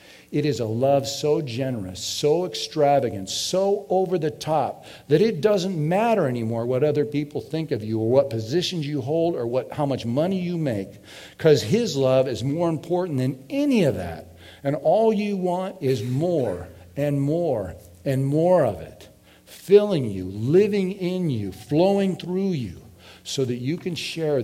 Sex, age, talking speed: male, 50-69, 165 wpm